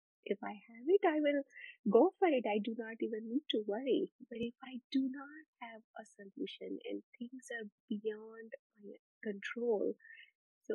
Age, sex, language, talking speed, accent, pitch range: 30-49, female, English, 175 wpm, Indian, 215-275 Hz